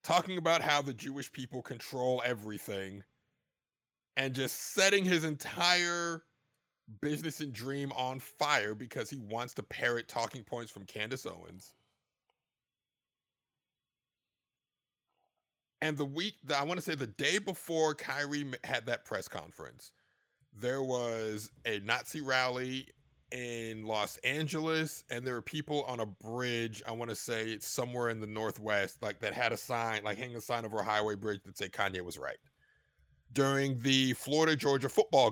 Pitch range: 115-145 Hz